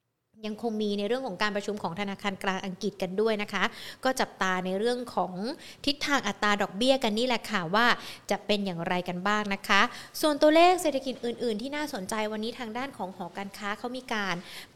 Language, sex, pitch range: Thai, female, 190-235 Hz